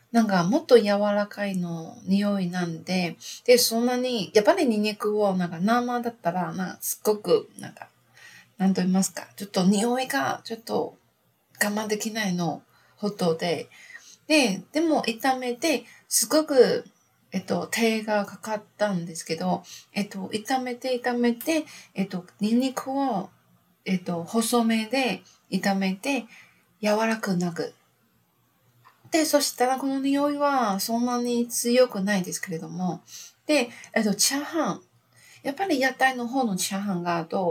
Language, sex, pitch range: Japanese, female, 190-245 Hz